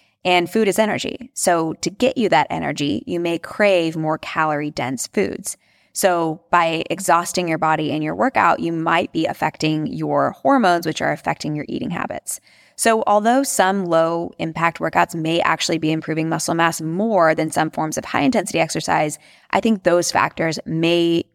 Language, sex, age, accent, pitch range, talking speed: English, female, 20-39, American, 155-190 Hz, 165 wpm